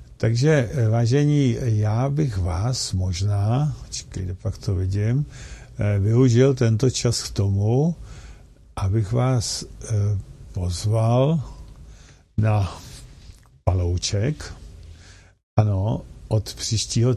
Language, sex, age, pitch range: Czech, male, 50-69, 100-125 Hz